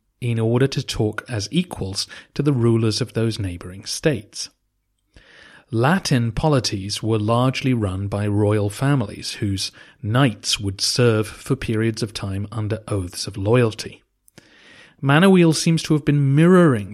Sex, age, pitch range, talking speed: male, 40-59, 105-140 Hz, 140 wpm